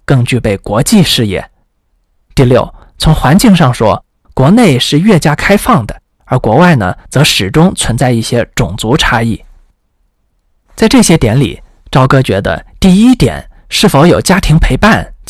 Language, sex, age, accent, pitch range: Chinese, male, 20-39, native, 115-185 Hz